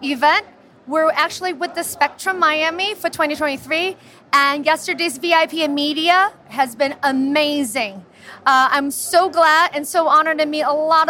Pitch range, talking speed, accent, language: 295-355 Hz, 150 wpm, American, English